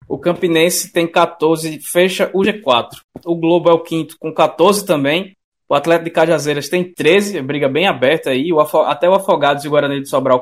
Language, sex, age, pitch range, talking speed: Portuguese, male, 20-39, 135-170 Hz, 190 wpm